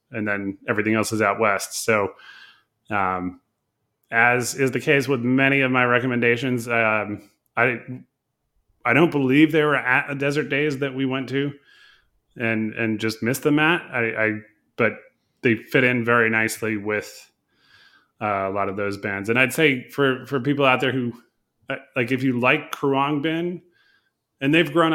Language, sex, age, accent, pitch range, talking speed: English, male, 30-49, American, 110-135 Hz, 170 wpm